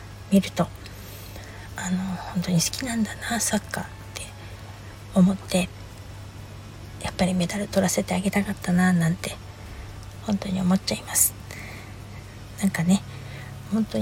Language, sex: Japanese, female